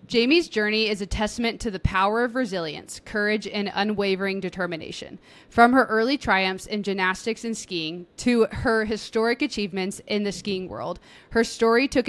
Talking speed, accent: 165 wpm, American